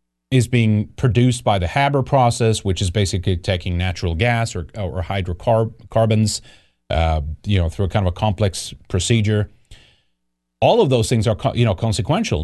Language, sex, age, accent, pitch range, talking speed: English, male, 30-49, American, 95-135 Hz, 170 wpm